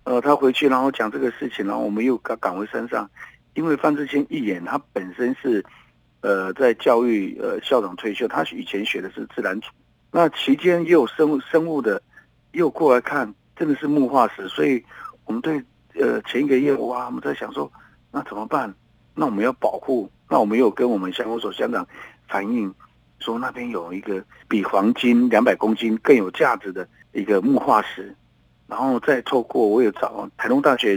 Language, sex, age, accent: Chinese, male, 50-69, native